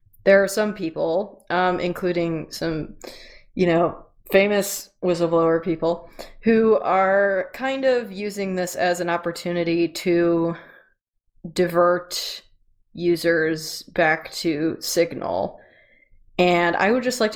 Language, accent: English, American